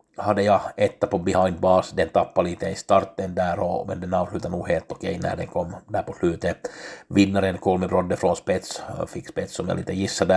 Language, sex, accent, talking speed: Swedish, male, Finnish, 205 wpm